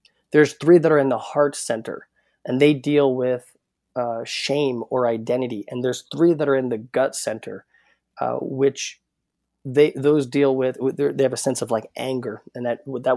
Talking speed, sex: 190 wpm, male